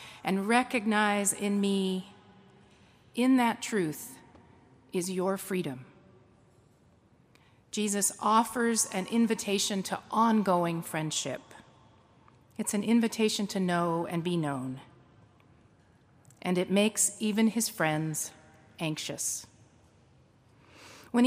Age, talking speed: 40-59, 95 wpm